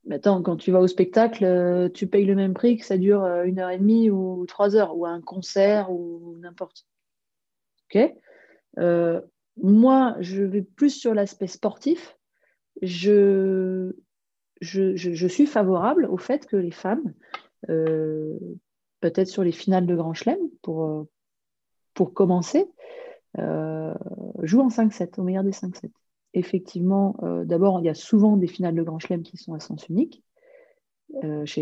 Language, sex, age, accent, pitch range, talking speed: French, female, 30-49, French, 175-215 Hz, 160 wpm